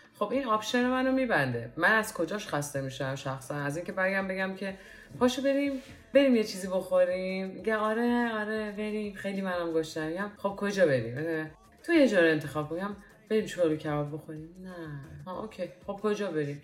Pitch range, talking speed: 140-195 Hz, 175 wpm